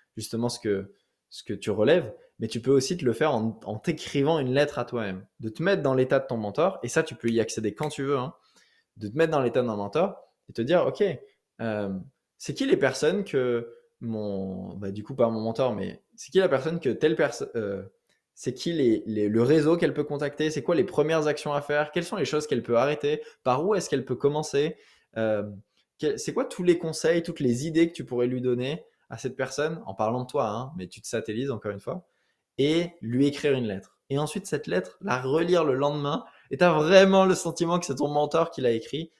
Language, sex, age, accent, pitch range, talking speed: French, male, 20-39, French, 115-155 Hz, 245 wpm